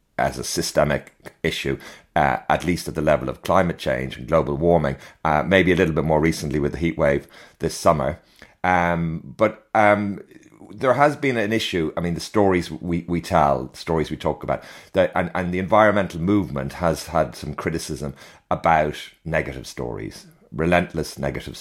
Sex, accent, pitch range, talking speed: male, British, 75-90 Hz, 180 wpm